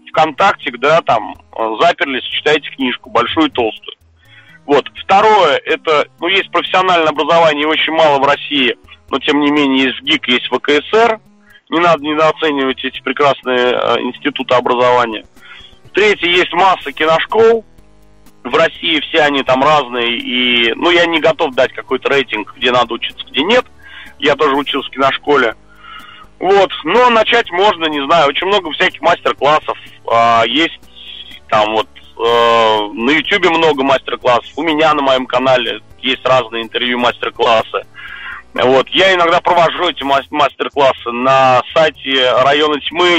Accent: native